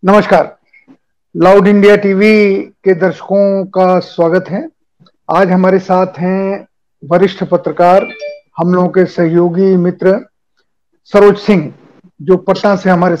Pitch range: 180-205 Hz